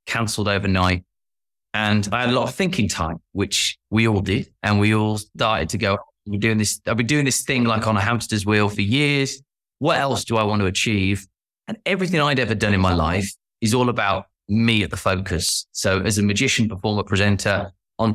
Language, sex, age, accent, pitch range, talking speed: English, male, 20-39, British, 105-135 Hz, 205 wpm